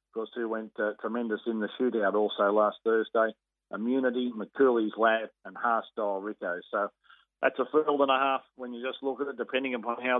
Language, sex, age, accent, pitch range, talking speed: English, male, 40-59, Australian, 110-125 Hz, 190 wpm